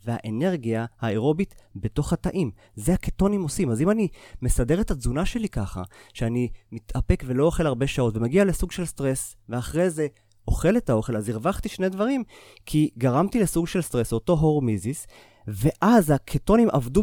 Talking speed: 155 wpm